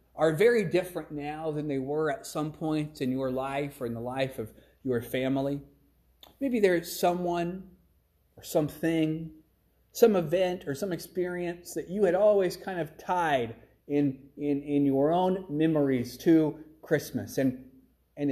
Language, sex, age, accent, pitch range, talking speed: English, male, 30-49, American, 120-170 Hz, 155 wpm